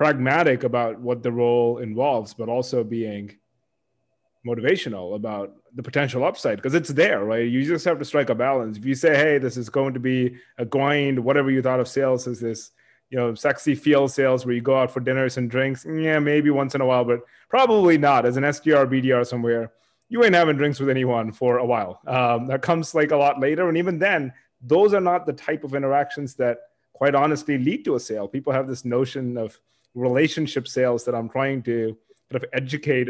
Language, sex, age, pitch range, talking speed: English, male, 30-49, 120-150 Hz, 210 wpm